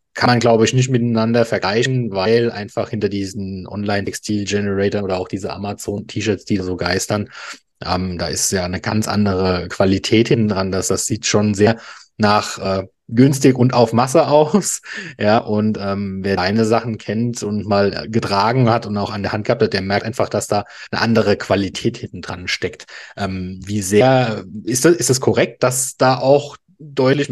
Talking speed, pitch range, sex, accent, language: 175 wpm, 105-130 Hz, male, German, German